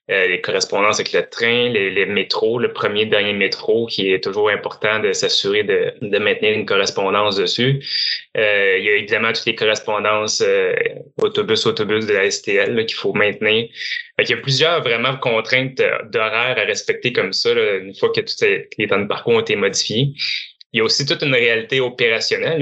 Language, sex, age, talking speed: French, male, 20-39, 195 wpm